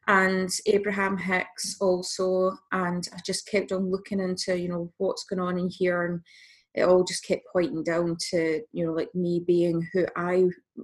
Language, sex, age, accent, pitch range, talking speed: English, female, 20-39, British, 180-200 Hz, 185 wpm